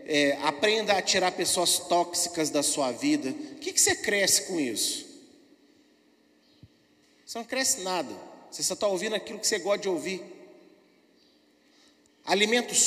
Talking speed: 145 wpm